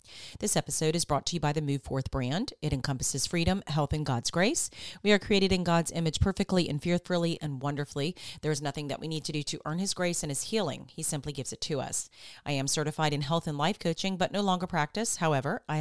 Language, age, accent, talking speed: English, 40-59, American, 245 wpm